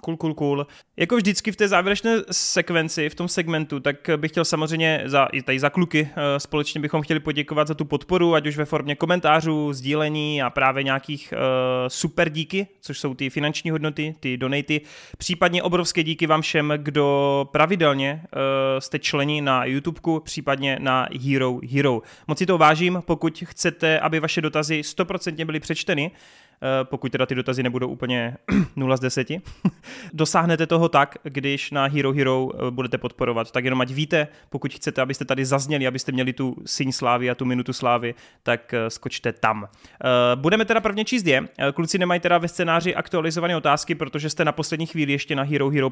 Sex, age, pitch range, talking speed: male, 20-39, 135-170 Hz, 180 wpm